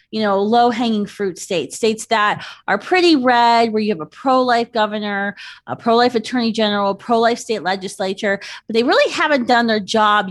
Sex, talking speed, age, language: female, 175 wpm, 30-49, English